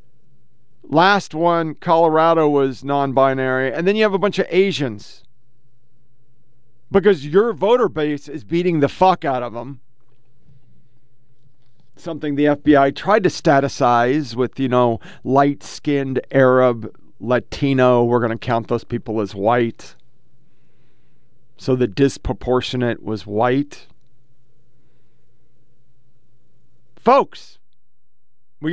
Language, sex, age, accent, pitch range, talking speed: English, male, 40-59, American, 125-180 Hz, 105 wpm